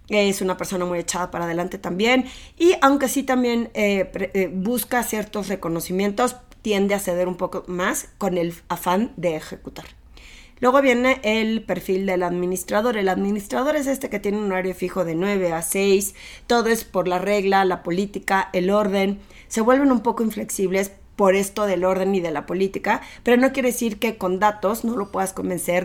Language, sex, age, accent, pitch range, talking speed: Spanish, female, 30-49, Mexican, 180-230 Hz, 185 wpm